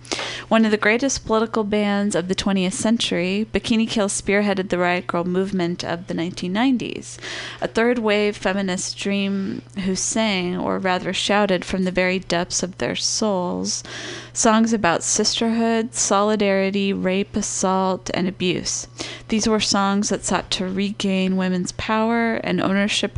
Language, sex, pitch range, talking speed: English, female, 180-210 Hz, 145 wpm